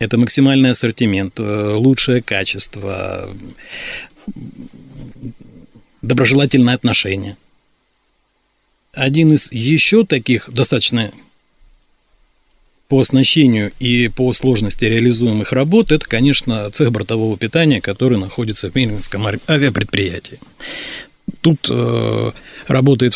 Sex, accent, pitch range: male, native, 110-135 Hz